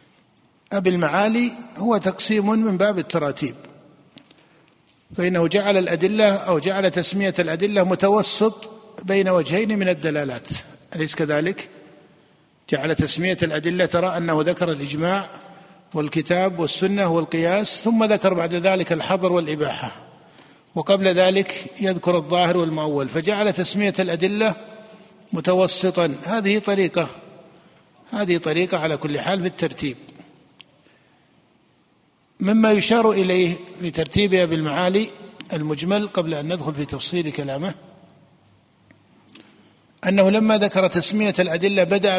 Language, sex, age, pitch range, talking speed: Arabic, male, 50-69, 165-200 Hz, 105 wpm